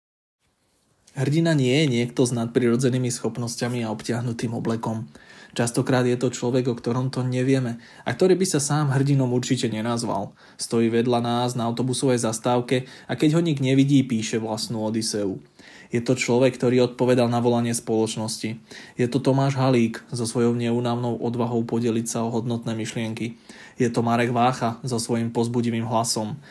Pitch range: 115-130 Hz